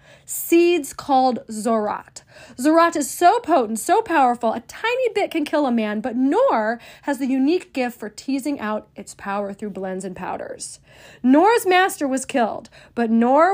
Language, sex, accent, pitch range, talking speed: English, female, American, 215-305 Hz, 165 wpm